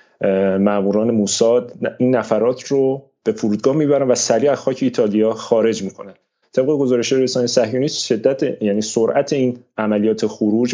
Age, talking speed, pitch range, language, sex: 30-49, 125 wpm, 110-145 Hz, Persian, male